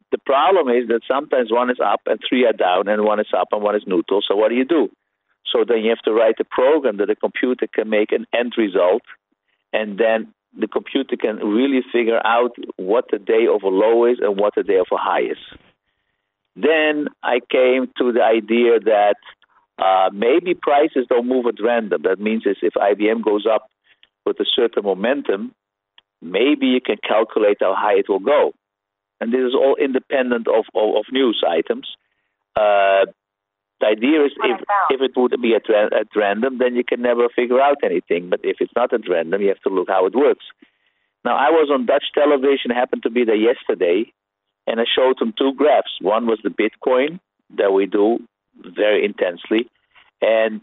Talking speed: 195 wpm